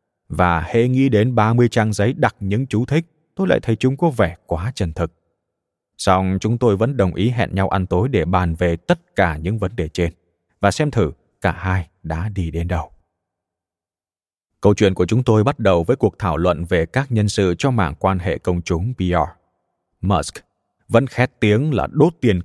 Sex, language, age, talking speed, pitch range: male, Vietnamese, 20-39, 205 wpm, 90-115 Hz